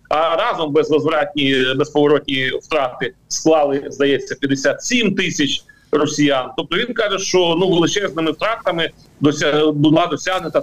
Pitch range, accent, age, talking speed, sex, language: 140-195 Hz, native, 40-59, 105 wpm, male, Ukrainian